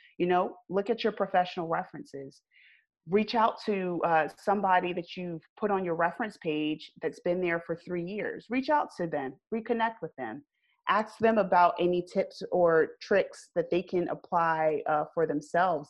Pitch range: 165-200 Hz